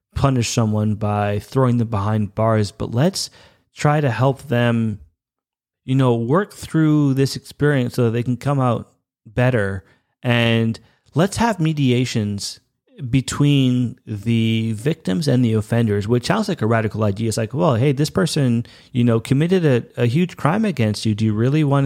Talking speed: 165 wpm